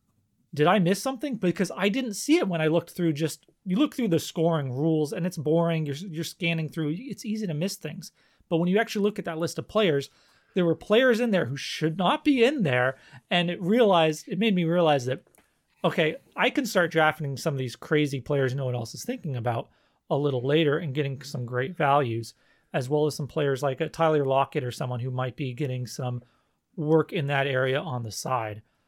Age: 30-49